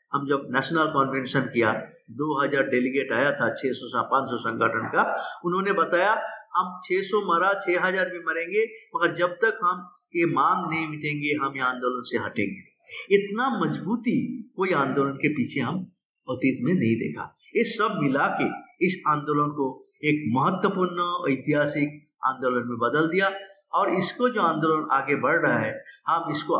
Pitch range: 145-195 Hz